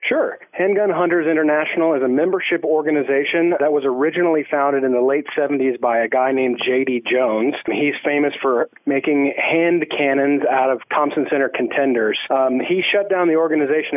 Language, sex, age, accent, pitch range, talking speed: English, male, 40-59, American, 130-155 Hz, 170 wpm